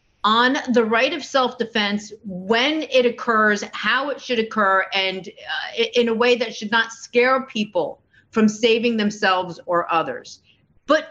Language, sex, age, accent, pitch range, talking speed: English, female, 40-59, American, 220-285 Hz, 150 wpm